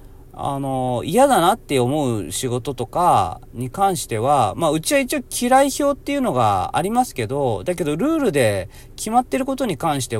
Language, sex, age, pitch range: Japanese, male, 40-59, 115-175 Hz